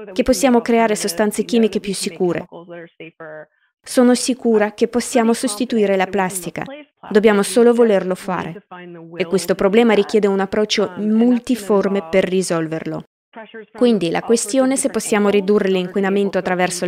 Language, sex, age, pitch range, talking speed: Italian, female, 20-39, 190-230 Hz, 125 wpm